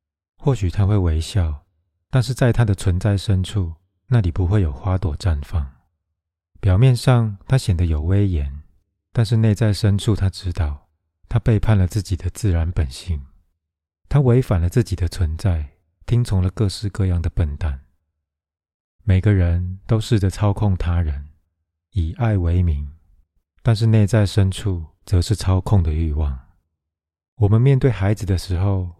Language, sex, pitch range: Chinese, male, 80-105 Hz